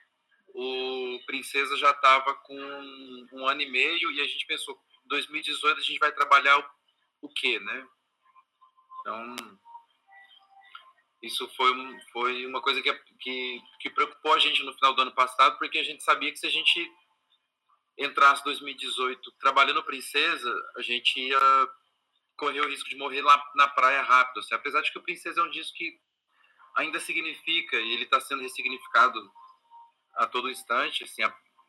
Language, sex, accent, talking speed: English, male, Brazilian, 165 wpm